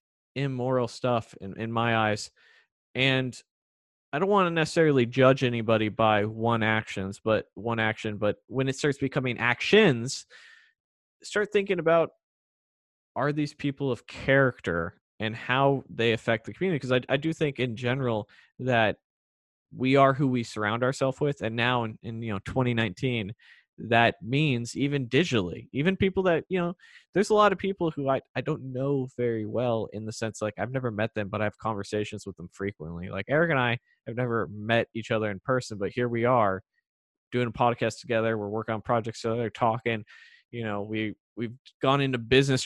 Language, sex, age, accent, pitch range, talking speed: English, male, 20-39, American, 110-140 Hz, 185 wpm